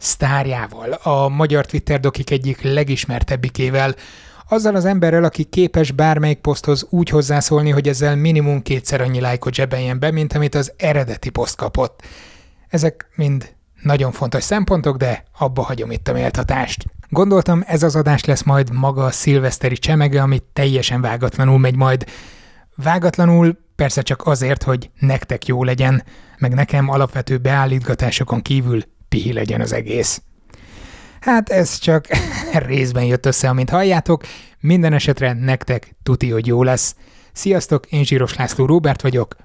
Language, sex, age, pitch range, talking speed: Hungarian, male, 30-49, 125-150 Hz, 140 wpm